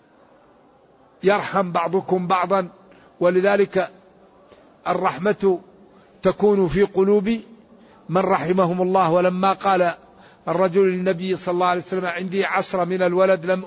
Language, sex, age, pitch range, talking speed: Arabic, male, 60-79, 170-190 Hz, 105 wpm